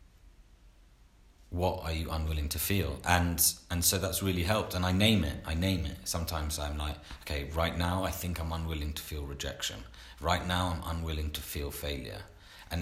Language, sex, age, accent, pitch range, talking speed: English, male, 30-49, British, 80-95 Hz, 185 wpm